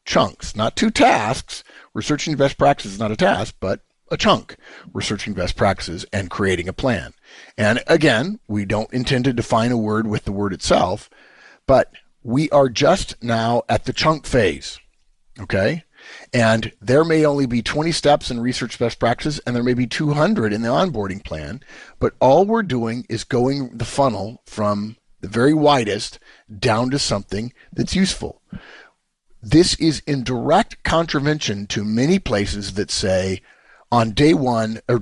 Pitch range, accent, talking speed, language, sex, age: 105-140 Hz, American, 165 wpm, English, male, 50-69